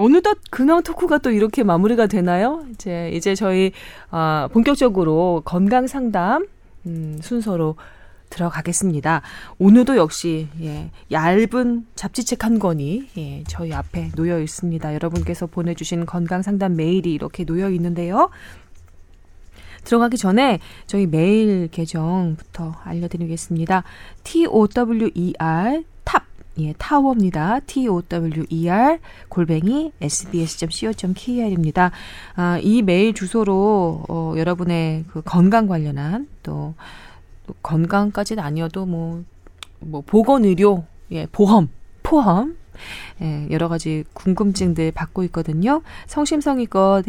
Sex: female